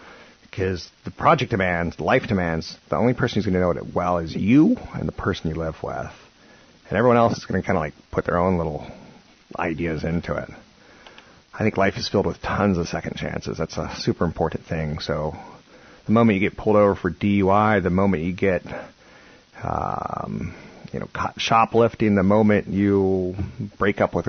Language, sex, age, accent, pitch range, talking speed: English, male, 30-49, American, 80-105 Hz, 195 wpm